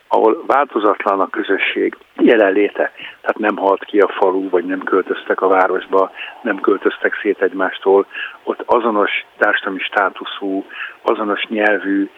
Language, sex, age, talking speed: Hungarian, male, 50-69, 130 wpm